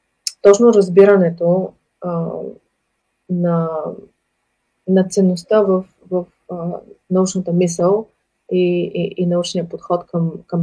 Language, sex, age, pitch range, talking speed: Bulgarian, female, 30-49, 170-190 Hz, 100 wpm